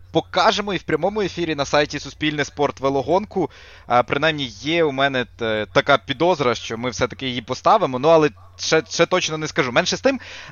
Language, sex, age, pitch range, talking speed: Ukrainian, male, 20-39, 120-155 Hz, 185 wpm